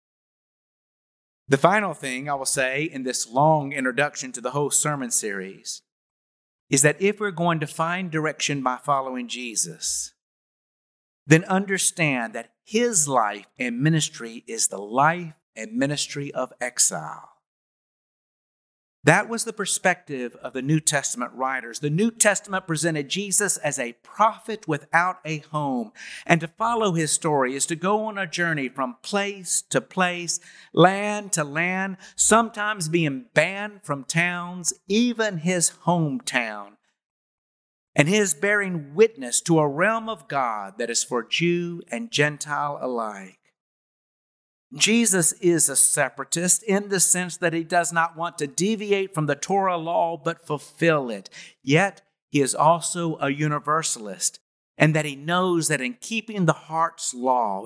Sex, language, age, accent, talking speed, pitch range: male, English, 50-69, American, 145 wpm, 135-185 Hz